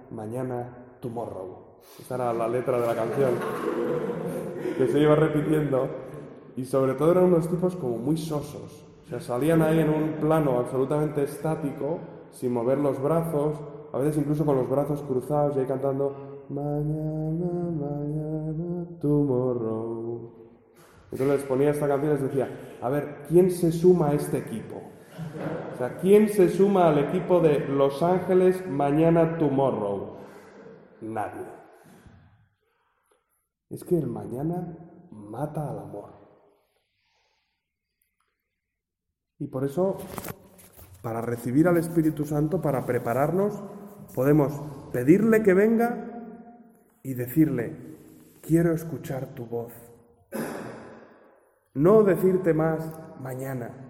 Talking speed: 120 wpm